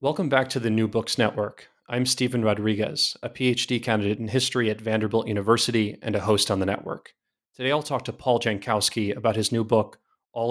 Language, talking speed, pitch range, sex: English, 200 wpm, 105-120 Hz, male